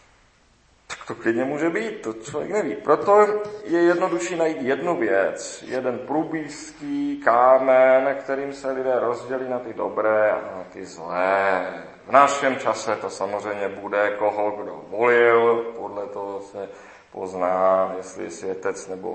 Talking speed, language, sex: 140 wpm, Czech, male